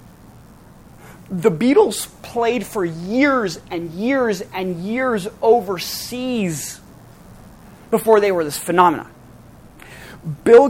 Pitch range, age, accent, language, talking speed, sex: 175-250 Hz, 30-49, American, English, 90 wpm, male